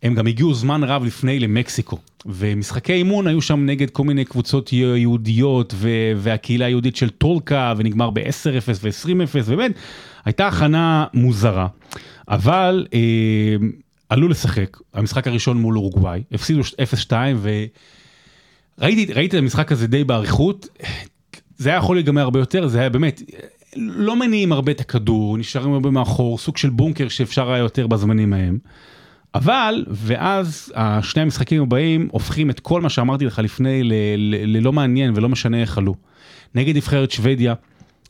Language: Hebrew